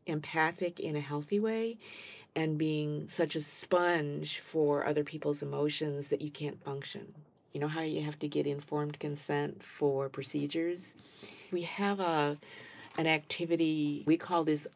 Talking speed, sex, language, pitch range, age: 150 wpm, female, English, 145-175 Hz, 50-69